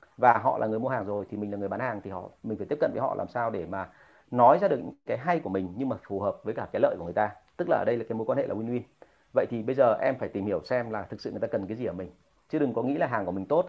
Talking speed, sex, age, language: 360 wpm, male, 30-49, Vietnamese